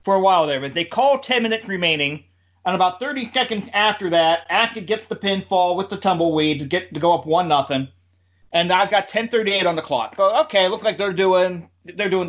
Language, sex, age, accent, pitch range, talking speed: English, male, 40-59, American, 145-220 Hz, 225 wpm